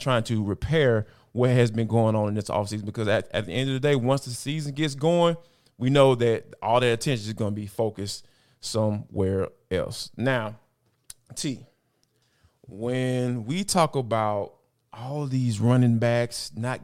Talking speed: 170 wpm